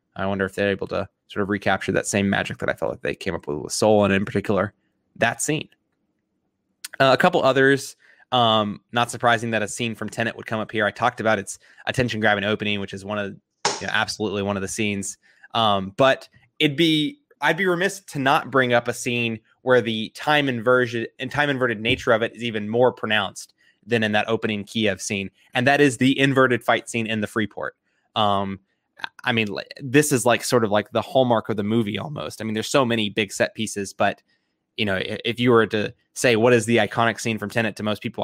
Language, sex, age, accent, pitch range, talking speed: English, male, 20-39, American, 105-125 Hz, 230 wpm